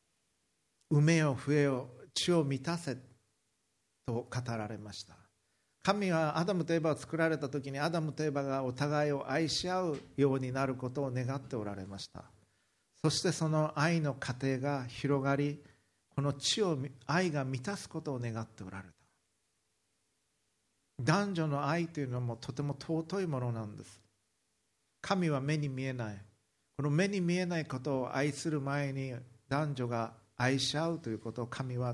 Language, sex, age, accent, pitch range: Japanese, male, 50-69, native, 115-145 Hz